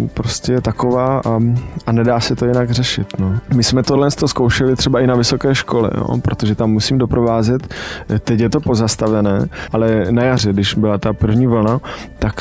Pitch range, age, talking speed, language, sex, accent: 105-125 Hz, 20-39, 185 wpm, Czech, male, native